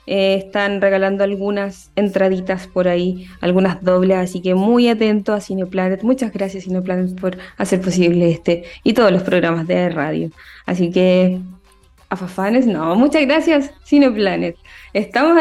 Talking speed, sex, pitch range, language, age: 140 wpm, female, 185-235 Hz, Spanish, 20-39